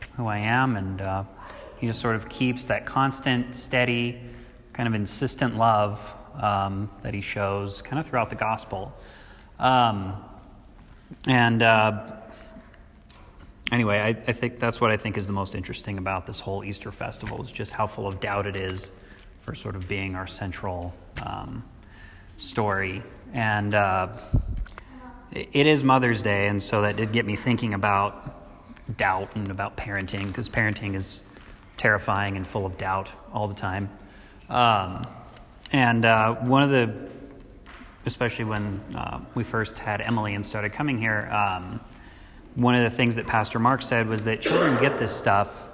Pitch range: 100-120 Hz